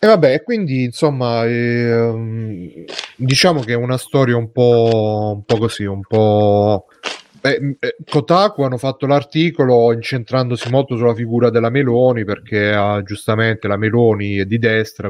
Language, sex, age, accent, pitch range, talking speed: Italian, male, 30-49, native, 105-120 Hz, 145 wpm